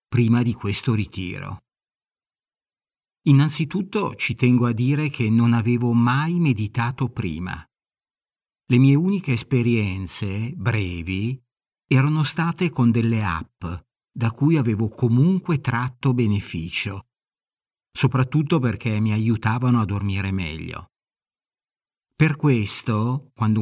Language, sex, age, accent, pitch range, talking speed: Italian, male, 50-69, native, 110-140 Hz, 105 wpm